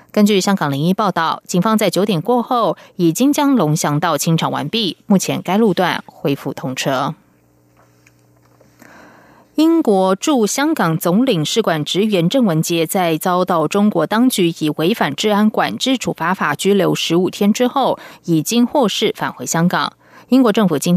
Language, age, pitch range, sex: German, 20-39, 160-220 Hz, female